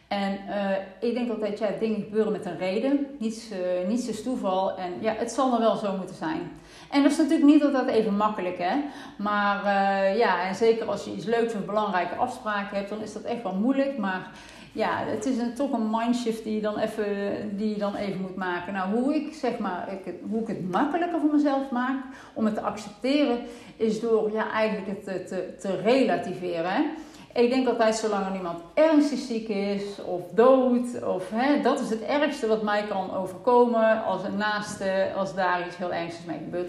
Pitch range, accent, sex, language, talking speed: 190-245 Hz, Dutch, female, Dutch, 195 wpm